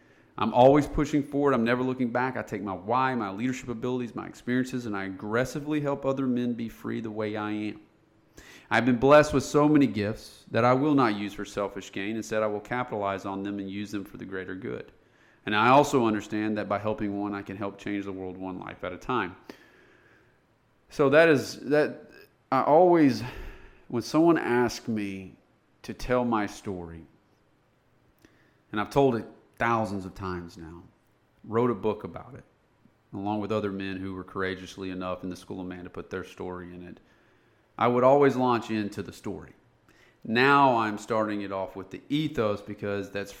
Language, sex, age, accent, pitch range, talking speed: English, male, 40-59, American, 100-125 Hz, 190 wpm